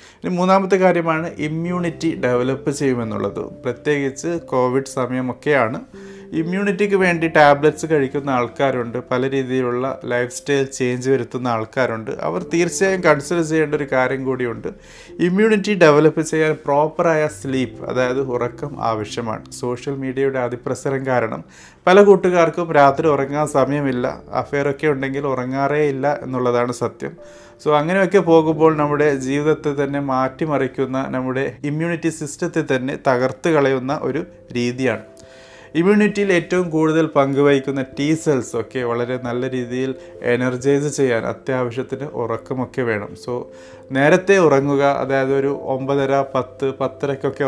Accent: native